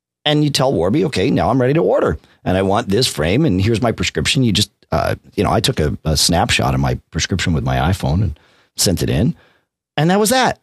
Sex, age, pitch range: male, 40-59, 100-160 Hz